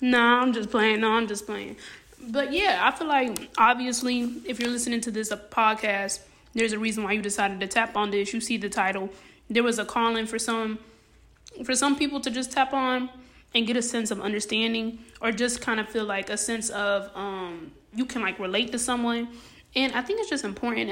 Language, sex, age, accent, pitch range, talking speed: English, female, 20-39, American, 205-245 Hz, 220 wpm